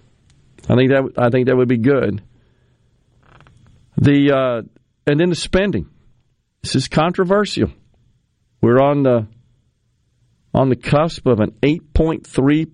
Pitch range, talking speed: 115-140 Hz, 135 wpm